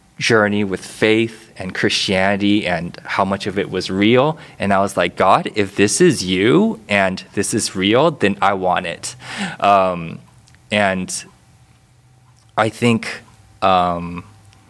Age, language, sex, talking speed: 20-39, English, male, 140 wpm